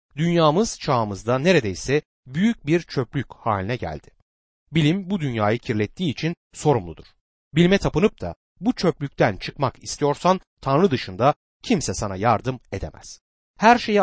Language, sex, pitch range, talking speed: Turkish, male, 105-165 Hz, 125 wpm